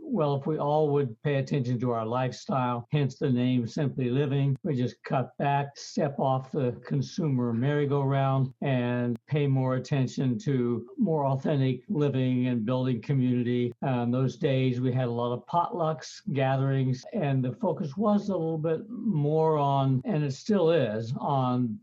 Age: 60-79